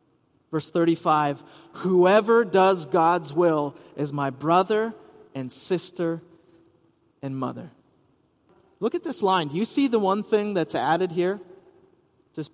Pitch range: 160-205 Hz